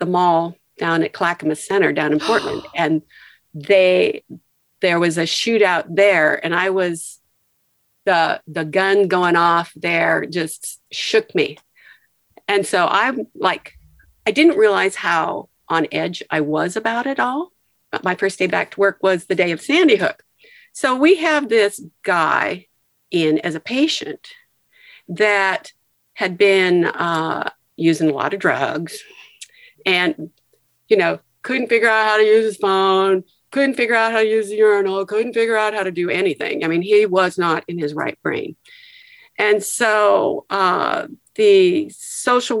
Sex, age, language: female, 50-69, English